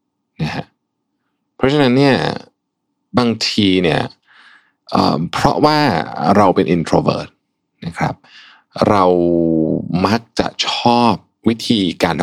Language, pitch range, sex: Thai, 75-105 Hz, male